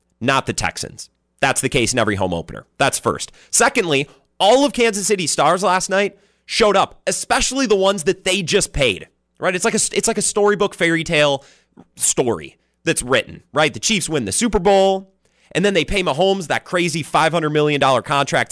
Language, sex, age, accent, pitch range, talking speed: English, male, 30-49, American, 125-195 Hz, 200 wpm